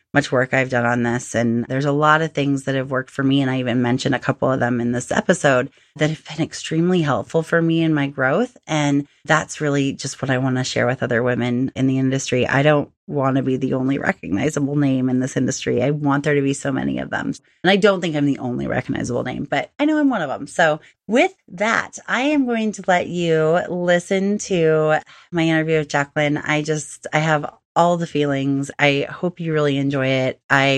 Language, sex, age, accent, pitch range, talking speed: English, female, 30-49, American, 140-185 Hz, 230 wpm